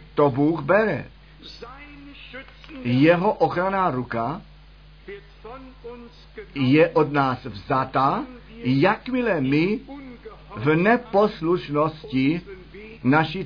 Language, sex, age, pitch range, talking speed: Czech, male, 50-69, 145-210 Hz, 65 wpm